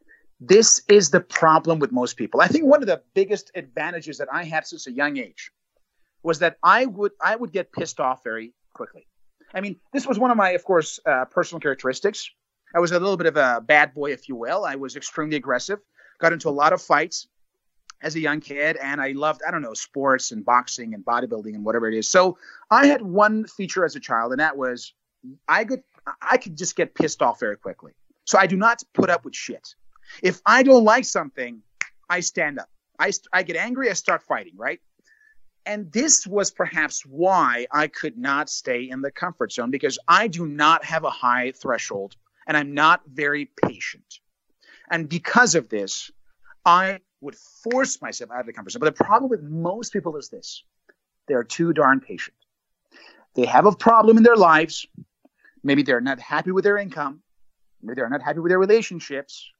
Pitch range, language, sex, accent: 140-210 Hz, English, male, American